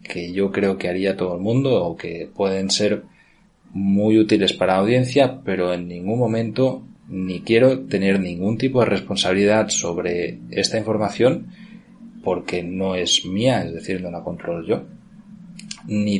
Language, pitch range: Spanish, 95-120 Hz